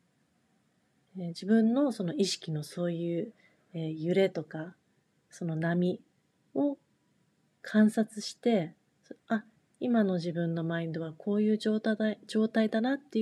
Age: 40-59